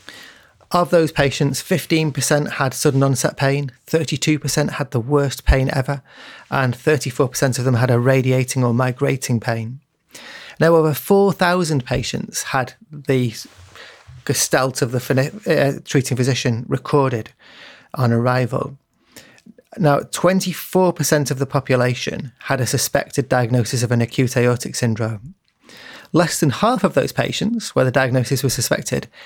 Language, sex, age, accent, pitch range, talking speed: English, male, 30-49, British, 125-150 Hz, 130 wpm